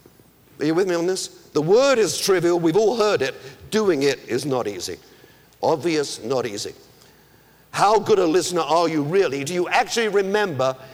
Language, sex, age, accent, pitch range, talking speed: English, male, 50-69, British, 140-210 Hz, 180 wpm